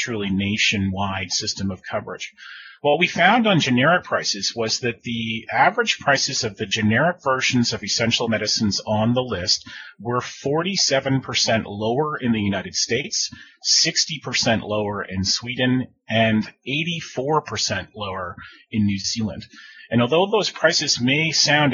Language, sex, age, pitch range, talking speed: English, male, 30-49, 105-135 Hz, 135 wpm